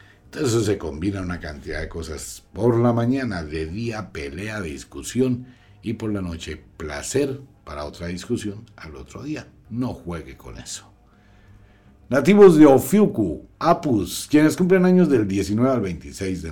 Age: 60-79